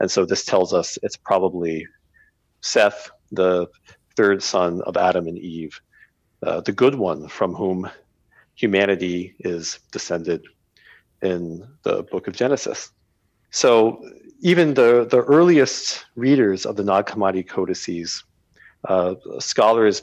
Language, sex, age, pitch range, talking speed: English, male, 40-59, 95-120 Hz, 125 wpm